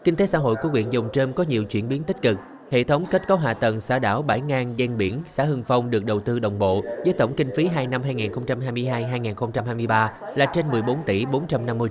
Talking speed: 230 wpm